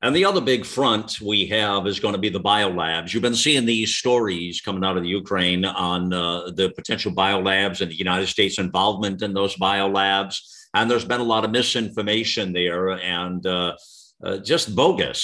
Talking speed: 200 wpm